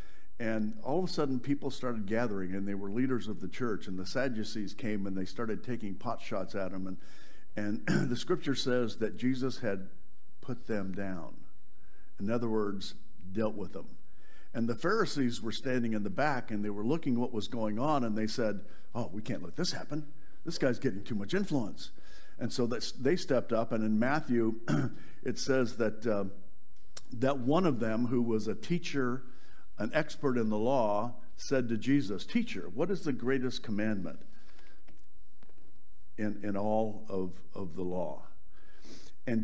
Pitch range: 105-130 Hz